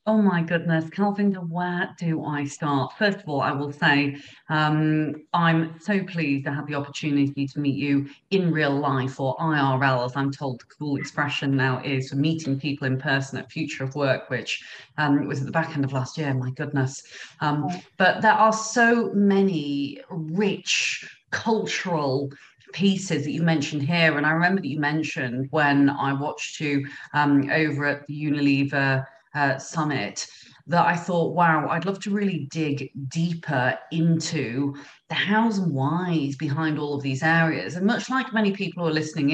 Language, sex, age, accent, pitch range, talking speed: English, female, 40-59, British, 140-170 Hz, 175 wpm